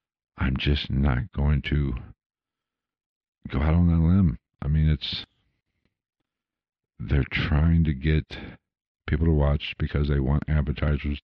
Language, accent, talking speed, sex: English, American, 130 wpm, male